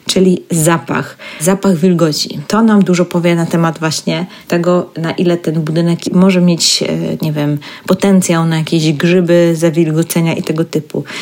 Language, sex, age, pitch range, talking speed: Polish, female, 30-49, 165-190 Hz, 150 wpm